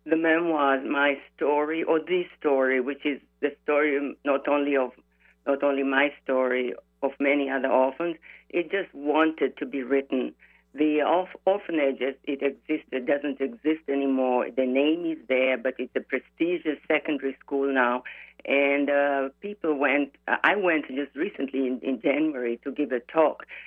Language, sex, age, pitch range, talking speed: English, female, 50-69, 130-150 Hz, 160 wpm